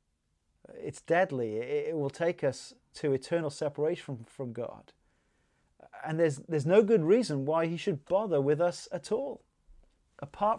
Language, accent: English, British